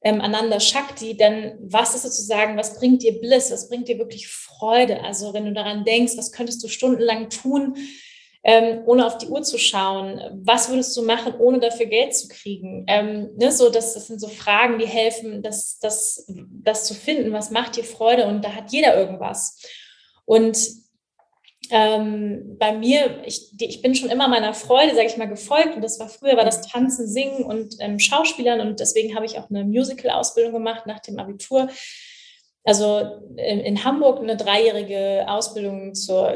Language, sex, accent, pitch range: German, female, German, 215-245 Hz